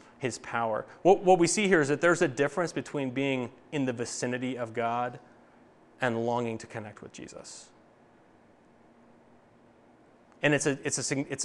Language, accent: English, American